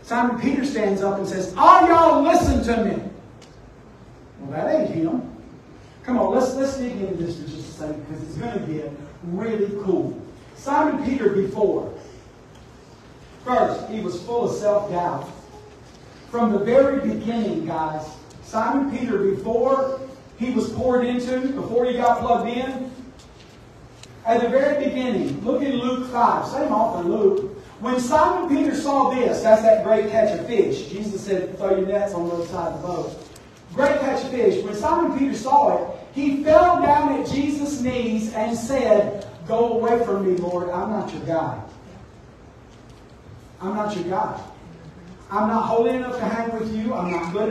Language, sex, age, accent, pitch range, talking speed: English, male, 40-59, American, 190-260 Hz, 170 wpm